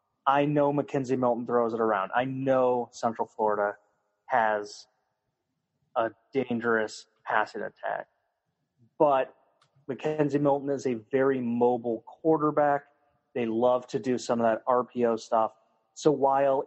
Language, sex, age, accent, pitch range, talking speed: English, male, 30-49, American, 115-140 Hz, 125 wpm